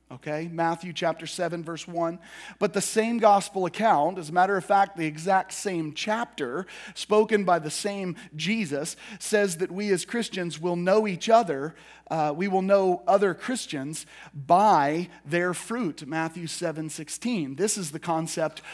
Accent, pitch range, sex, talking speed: American, 160-205 Hz, male, 160 wpm